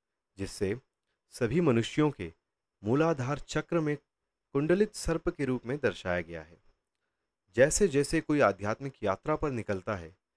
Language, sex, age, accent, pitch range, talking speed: Hindi, male, 30-49, native, 95-145 Hz, 135 wpm